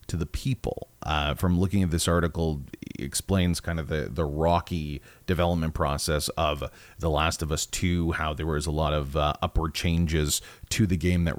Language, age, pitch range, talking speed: English, 30-49, 80-95 Hz, 190 wpm